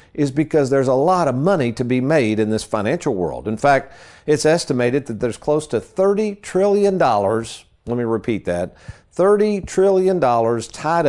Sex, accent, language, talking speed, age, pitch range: male, American, English, 170 wpm, 50-69, 115-160 Hz